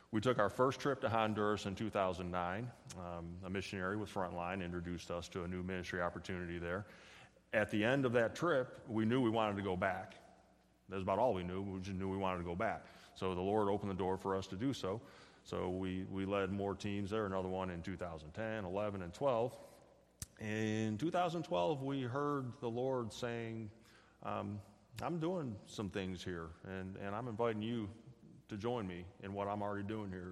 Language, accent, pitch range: English, American, 95-110 Hz